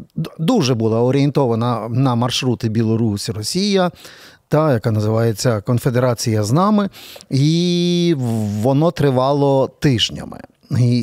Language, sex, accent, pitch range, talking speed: Ukrainian, male, native, 120-155 Hz, 85 wpm